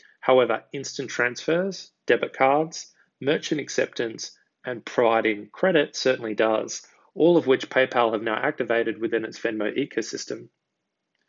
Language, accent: English, Australian